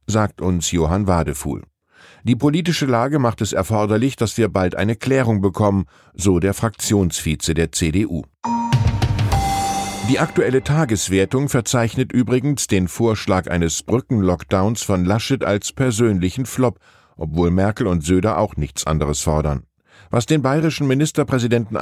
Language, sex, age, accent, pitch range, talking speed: German, male, 10-29, German, 95-125 Hz, 130 wpm